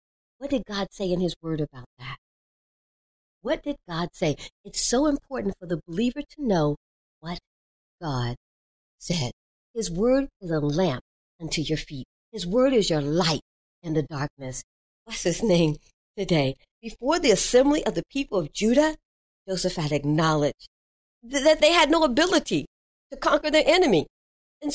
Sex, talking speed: female, 160 wpm